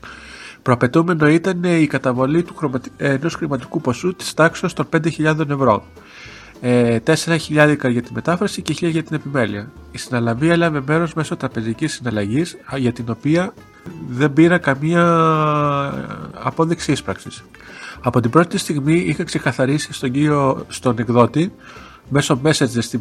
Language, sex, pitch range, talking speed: Greek, male, 125-160 Hz, 135 wpm